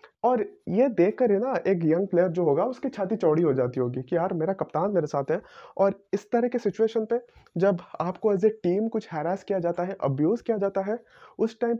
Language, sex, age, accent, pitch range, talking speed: Hindi, male, 20-39, native, 165-220 Hz, 230 wpm